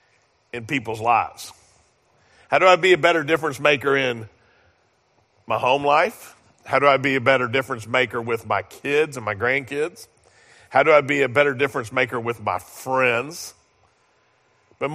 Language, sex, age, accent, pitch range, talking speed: English, male, 50-69, American, 130-180 Hz, 165 wpm